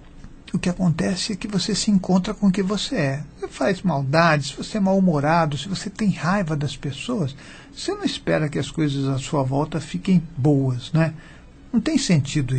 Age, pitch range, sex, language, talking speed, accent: 60-79, 145-185 Hz, male, Portuguese, 200 wpm, Brazilian